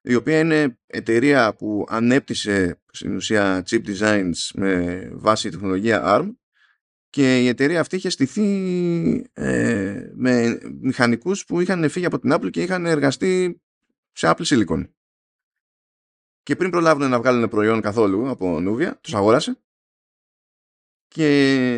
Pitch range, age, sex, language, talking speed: 100-130 Hz, 20-39, male, Greek, 130 wpm